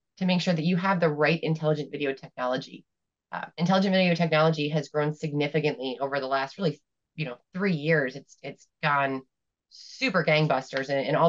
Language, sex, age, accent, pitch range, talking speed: English, female, 20-39, American, 150-190 Hz, 175 wpm